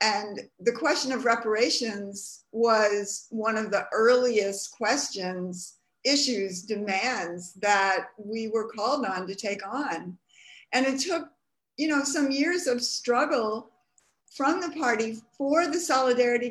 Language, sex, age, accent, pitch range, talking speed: English, female, 50-69, American, 210-270 Hz, 130 wpm